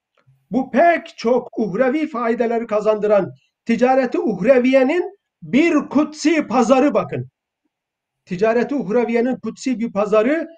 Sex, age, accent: male, 50-69, native